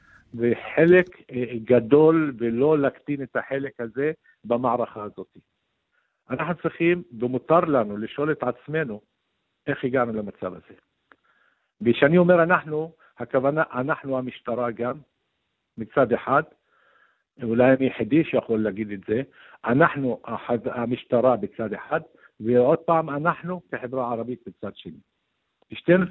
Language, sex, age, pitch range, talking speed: English, male, 50-69, 120-155 Hz, 90 wpm